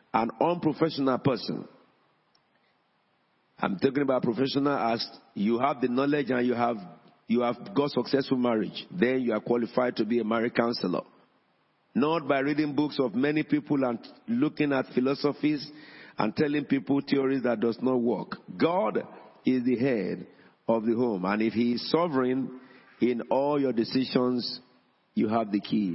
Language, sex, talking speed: English, male, 155 wpm